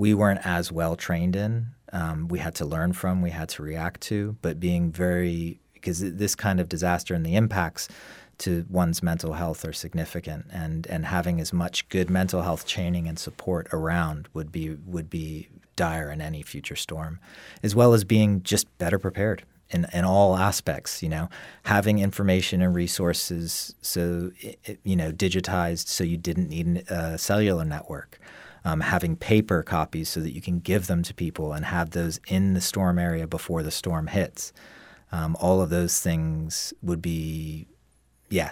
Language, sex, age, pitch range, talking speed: English, male, 30-49, 80-95 Hz, 180 wpm